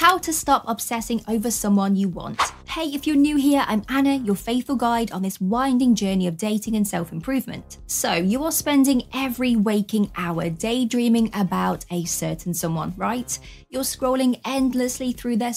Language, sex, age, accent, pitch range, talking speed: English, female, 20-39, British, 200-265 Hz, 170 wpm